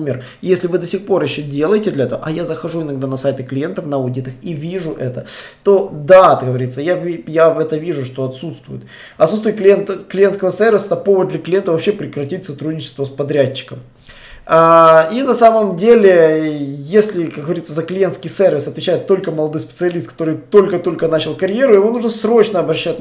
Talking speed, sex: 170 wpm, male